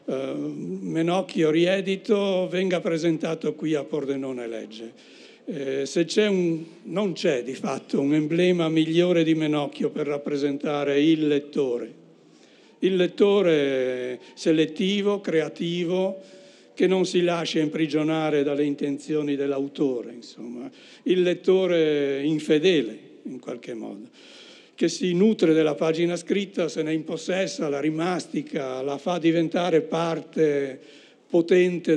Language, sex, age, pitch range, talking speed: Italian, male, 60-79, 140-170 Hz, 115 wpm